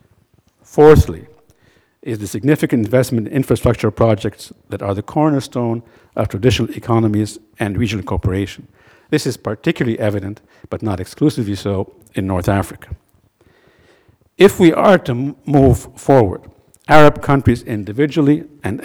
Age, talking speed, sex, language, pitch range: 60-79, 125 wpm, male, English, 105-140 Hz